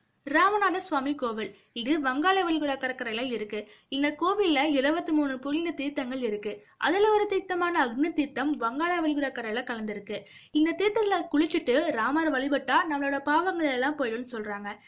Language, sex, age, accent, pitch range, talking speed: Tamil, female, 20-39, native, 235-310 Hz, 130 wpm